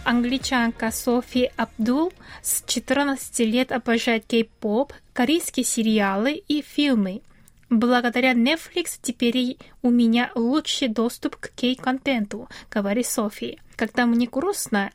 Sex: female